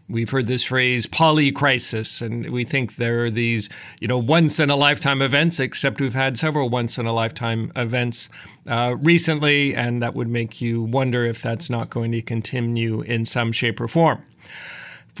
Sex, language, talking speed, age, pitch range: male, English, 160 wpm, 50-69, 120-140 Hz